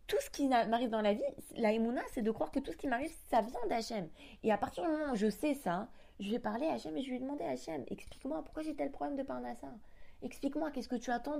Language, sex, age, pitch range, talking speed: French, female, 20-39, 180-240 Hz, 290 wpm